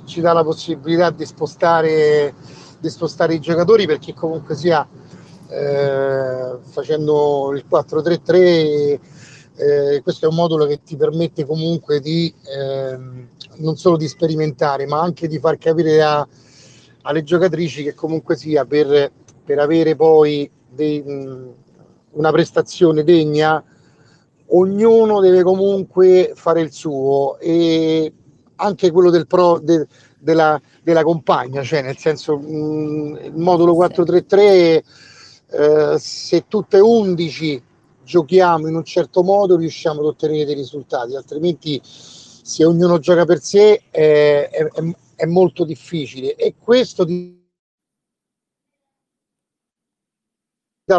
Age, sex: 40-59, male